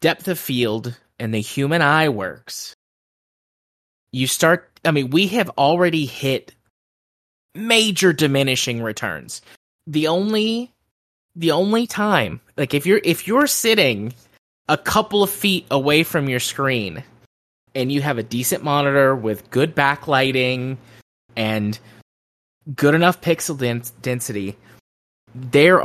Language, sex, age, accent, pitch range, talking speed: English, male, 20-39, American, 120-170 Hz, 125 wpm